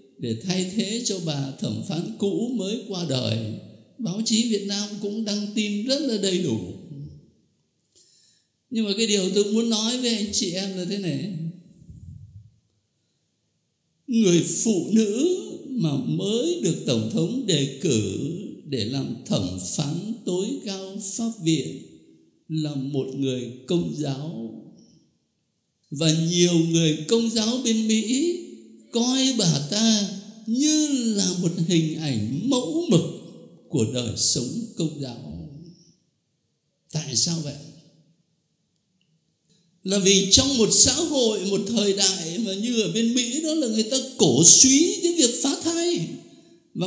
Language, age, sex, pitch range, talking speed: Vietnamese, 60-79, male, 155-230 Hz, 140 wpm